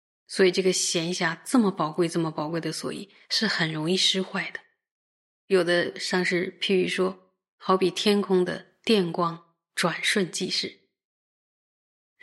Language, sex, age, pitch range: Chinese, female, 20-39, 175-195 Hz